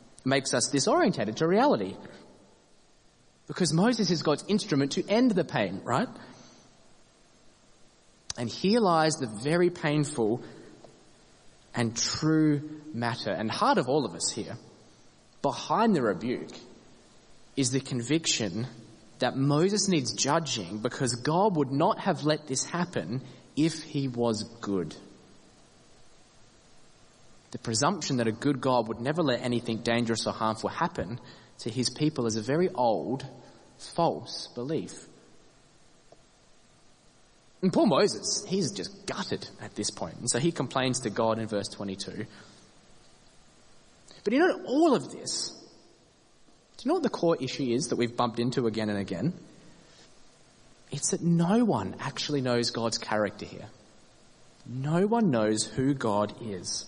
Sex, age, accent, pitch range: male, 20-39, Australian, 115-160 Hz